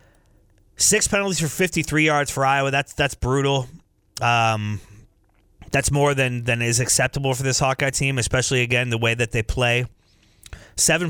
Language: English